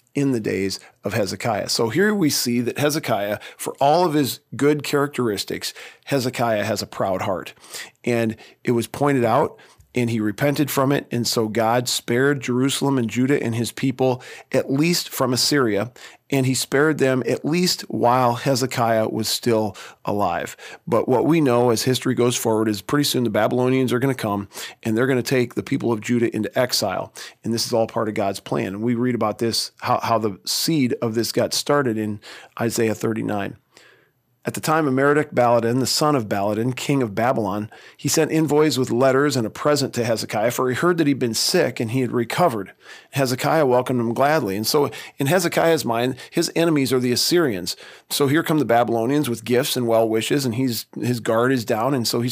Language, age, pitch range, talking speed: English, 40-59, 115-140 Hz, 200 wpm